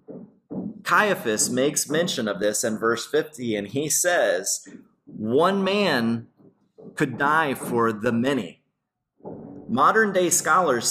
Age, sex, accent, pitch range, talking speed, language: 30-49, male, American, 115-150 Hz, 115 wpm, English